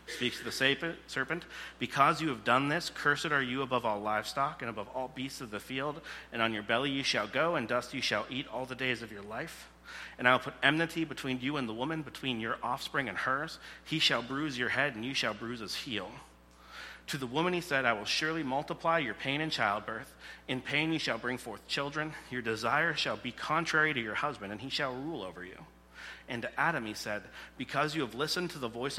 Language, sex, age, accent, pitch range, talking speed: English, male, 30-49, American, 110-140 Hz, 230 wpm